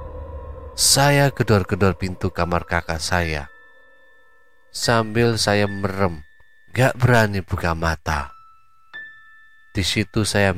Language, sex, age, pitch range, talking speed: Indonesian, male, 30-49, 85-115 Hz, 90 wpm